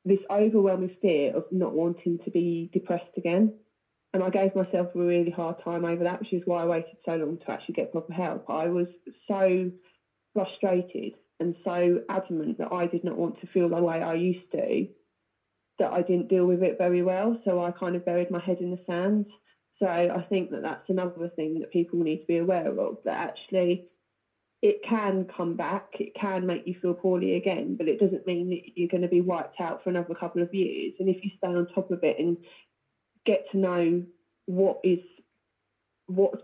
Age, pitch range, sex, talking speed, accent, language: 30-49, 170-190 Hz, female, 205 wpm, British, English